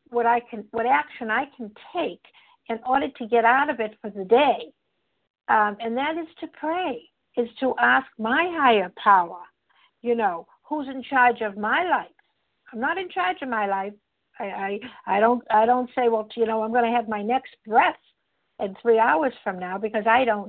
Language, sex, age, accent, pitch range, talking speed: English, female, 60-79, American, 220-275 Hz, 200 wpm